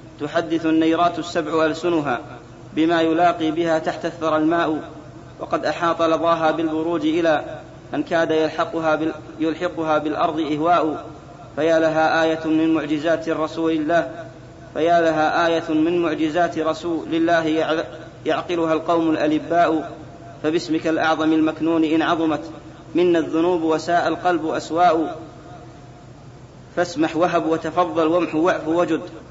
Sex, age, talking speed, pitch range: male, 40-59, 110 wpm, 155-170 Hz